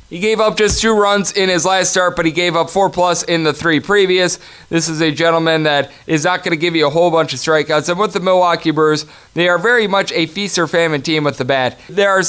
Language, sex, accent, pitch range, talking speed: English, male, American, 160-185 Hz, 270 wpm